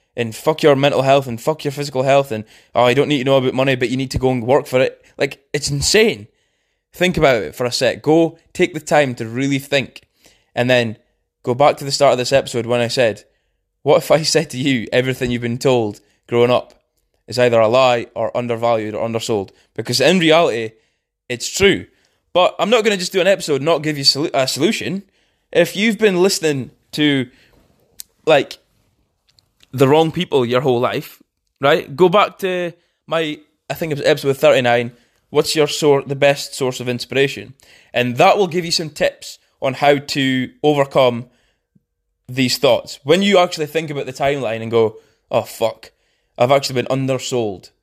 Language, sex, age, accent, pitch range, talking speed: English, male, 20-39, British, 125-155 Hz, 195 wpm